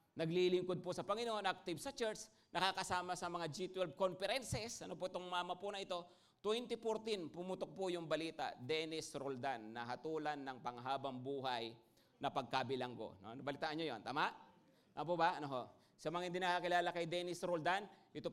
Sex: male